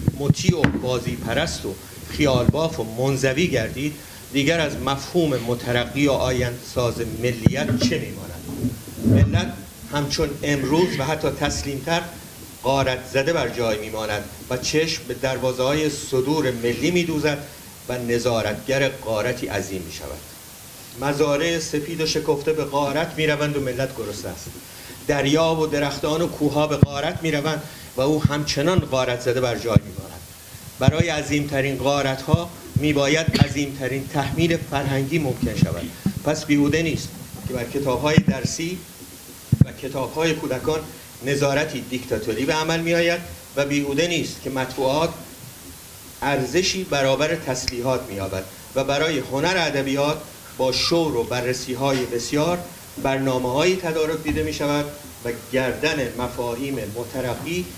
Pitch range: 125-150 Hz